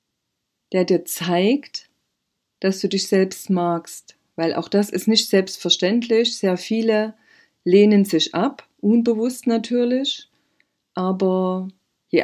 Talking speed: 115 wpm